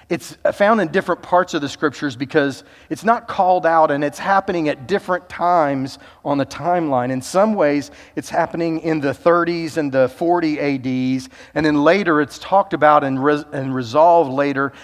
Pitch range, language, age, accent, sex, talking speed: 140-175 Hz, English, 40-59, American, male, 180 wpm